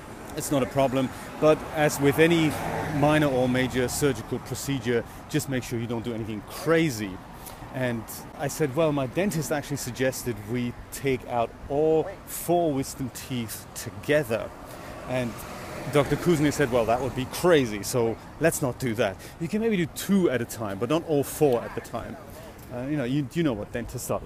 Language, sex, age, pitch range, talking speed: English, male, 30-49, 120-155 Hz, 180 wpm